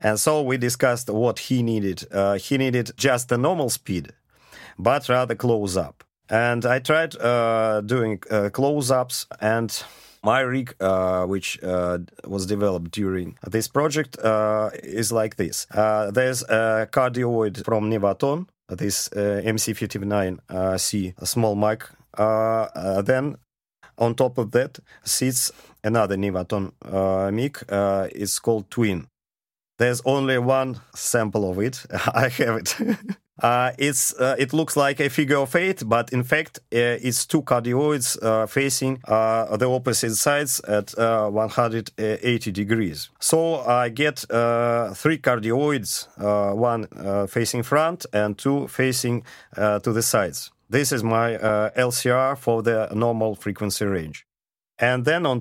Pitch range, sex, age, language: 105-130 Hz, male, 40-59, English